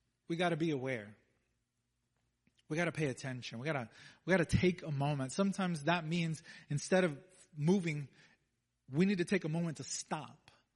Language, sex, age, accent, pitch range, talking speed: English, male, 30-49, American, 160-210 Hz, 160 wpm